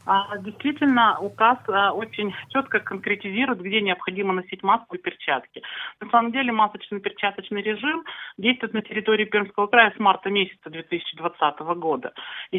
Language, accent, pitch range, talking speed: Russian, native, 175-215 Hz, 130 wpm